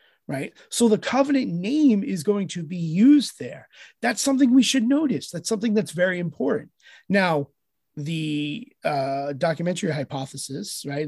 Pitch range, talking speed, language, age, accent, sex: 145-205 Hz, 145 wpm, English, 30-49, American, male